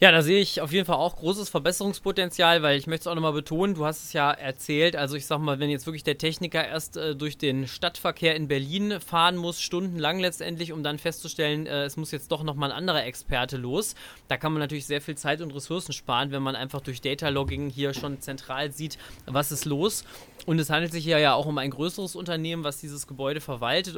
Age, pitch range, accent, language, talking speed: 20-39, 140-170 Hz, German, German, 230 wpm